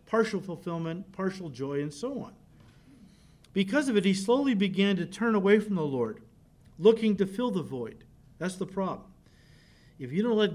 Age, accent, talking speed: 50-69, American, 175 wpm